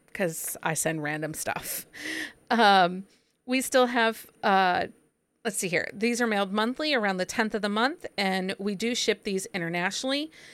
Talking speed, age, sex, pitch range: 165 wpm, 40-59, female, 180-230 Hz